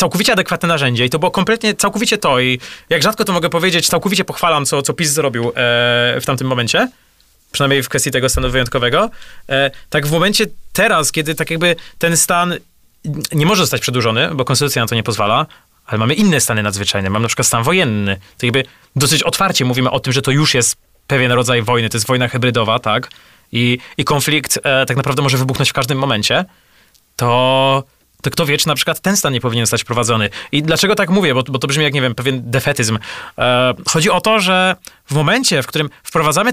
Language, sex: Polish, male